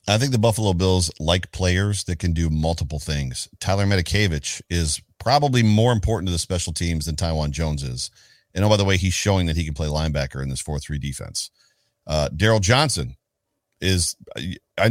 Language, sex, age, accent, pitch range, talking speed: English, male, 40-59, American, 90-110 Hz, 185 wpm